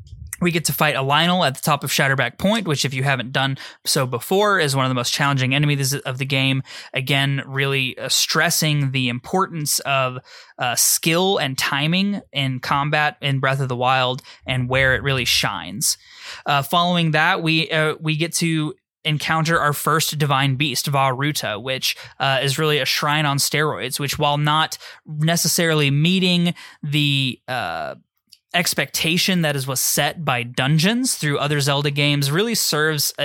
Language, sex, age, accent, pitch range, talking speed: English, male, 20-39, American, 135-160 Hz, 170 wpm